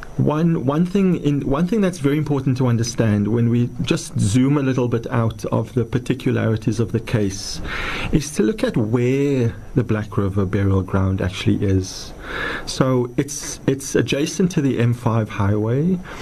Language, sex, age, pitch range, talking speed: English, male, 40-59, 105-135 Hz, 165 wpm